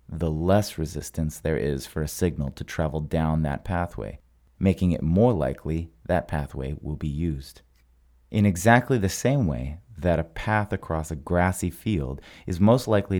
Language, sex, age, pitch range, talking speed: English, male, 30-49, 70-95 Hz, 170 wpm